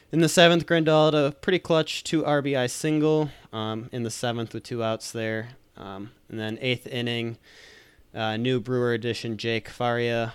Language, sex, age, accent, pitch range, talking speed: English, male, 20-39, American, 110-125 Hz, 175 wpm